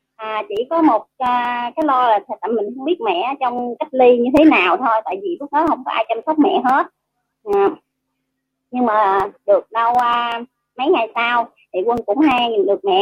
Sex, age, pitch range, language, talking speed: male, 30-49, 205-275 Hz, Vietnamese, 205 wpm